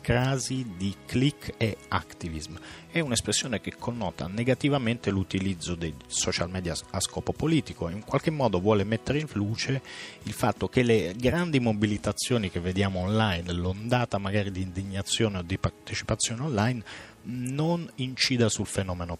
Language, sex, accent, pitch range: Italian, male, native, 90-120 Hz